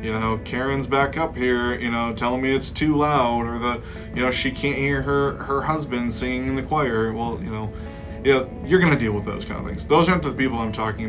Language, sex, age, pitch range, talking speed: English, male, 20-39, 110-130 Hz, 250 wpm